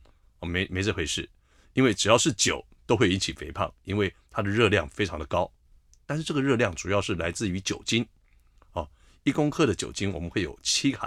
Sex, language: male, Chinese